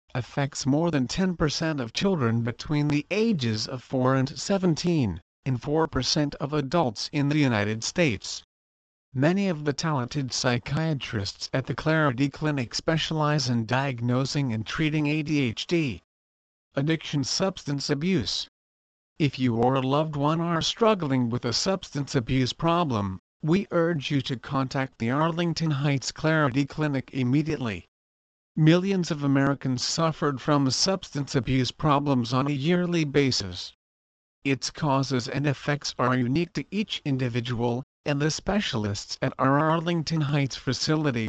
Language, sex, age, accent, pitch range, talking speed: English, male, 50-69, American, 125-155 Hz, 135 wpm